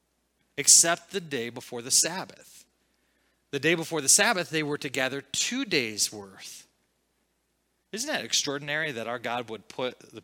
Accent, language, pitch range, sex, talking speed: American, English, 120-165 Hz, male, 160 wpm